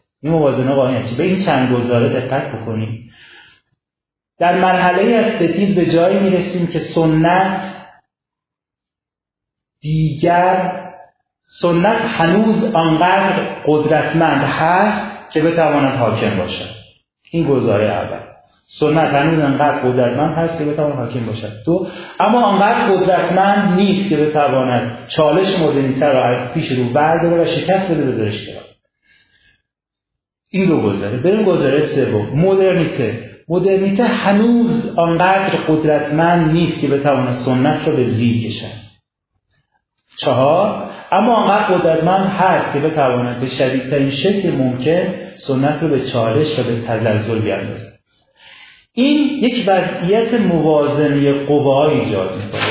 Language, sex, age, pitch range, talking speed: Persian, male, 40-59, 130-180 Hz, 120 wpm